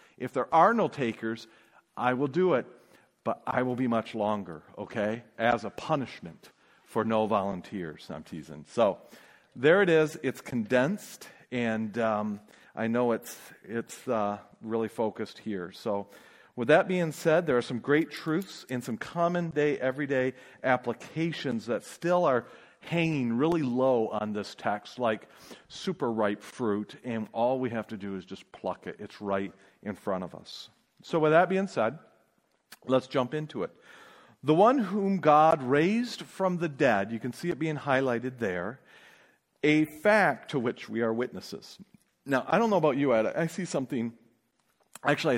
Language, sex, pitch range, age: English, male, 110-155 Hz, 40-59